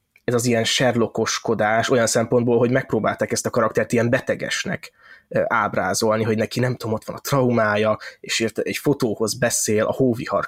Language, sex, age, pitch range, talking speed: Hungarian, male, 20-39, 110-130 Hz, 165 wpm